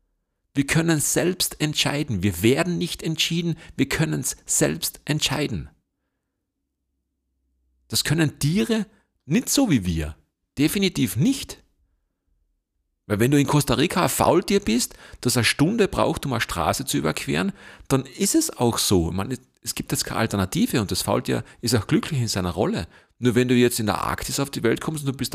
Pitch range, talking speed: 85-140 Hz, 175 wpm